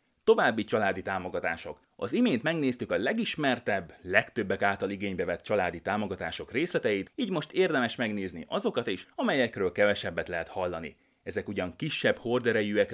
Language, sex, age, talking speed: Hungarian, male, 30-49, 135 wpm